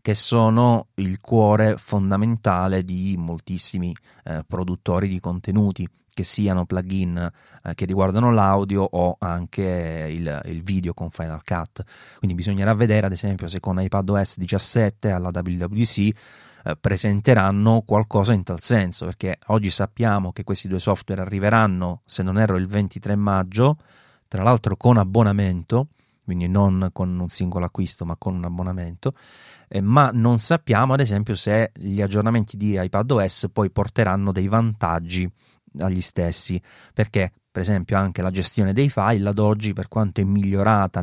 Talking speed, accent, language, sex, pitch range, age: 150 wpm, native, Italian, male, 90-110 Hz, 30-49